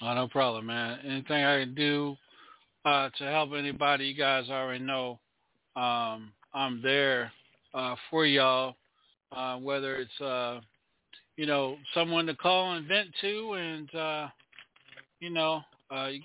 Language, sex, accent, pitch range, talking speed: English, male, American, 135-160 Hz, 150 wpm